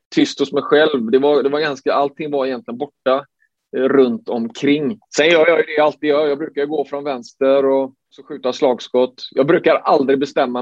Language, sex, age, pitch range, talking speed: English, male, 30-49, 125-145 Hz, 200 wpm